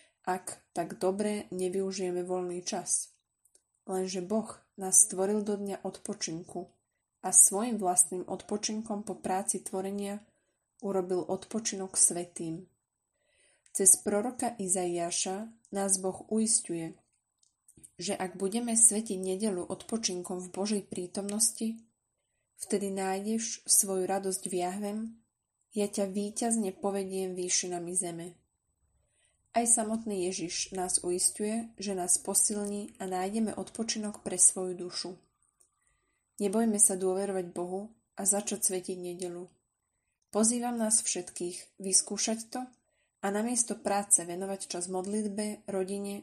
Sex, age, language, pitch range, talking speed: female, 20-39, Slovak, 185-210 Hz, 110 wpm